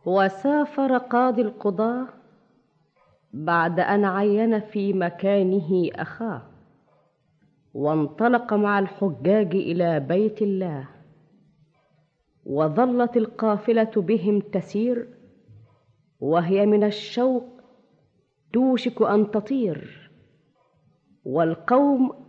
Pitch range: 175-235 Hz